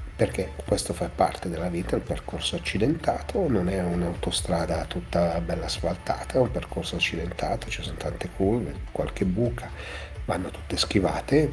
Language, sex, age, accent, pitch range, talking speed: Italian, male, 40-59, native, 90-105 Hz, 150 wpm